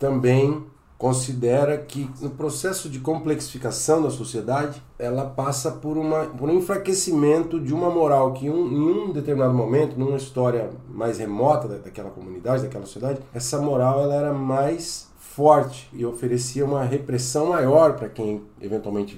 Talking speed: 150 wpm